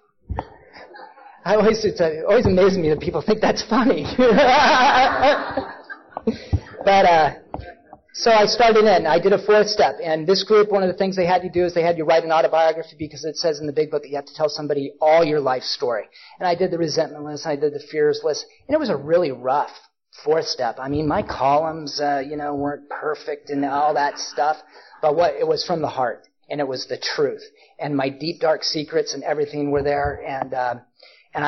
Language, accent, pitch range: English, American, 145-215 Hz